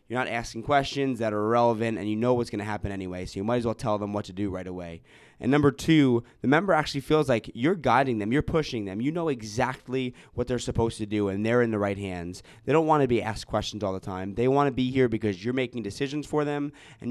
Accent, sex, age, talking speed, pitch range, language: American, male, 20-39, 270 wpm, 105-135 Hz, English